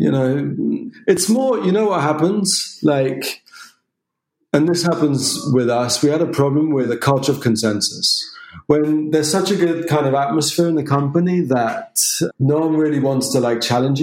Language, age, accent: English, 40-59, British